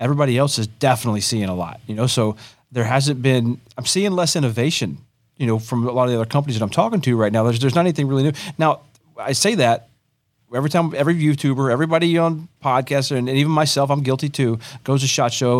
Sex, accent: male, American